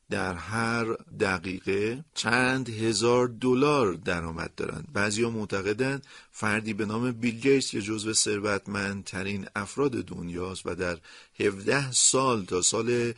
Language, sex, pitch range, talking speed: Persian, male, 95-130 Hz, 115 wpm